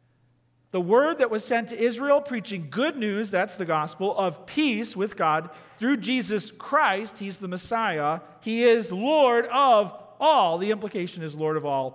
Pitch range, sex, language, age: 170-275 Hz, male, English, 40-59